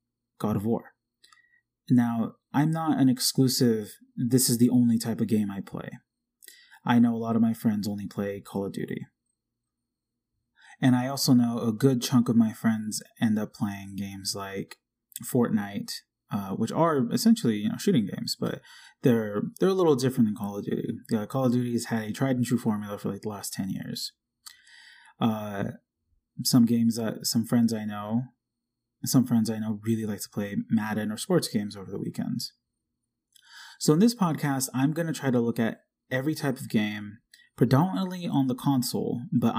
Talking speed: 185 wpm